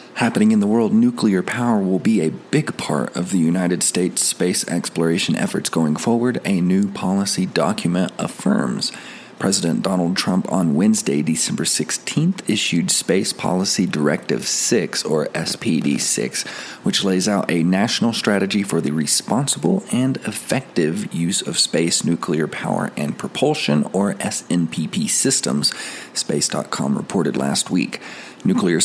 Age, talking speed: 40-59, 135 wpm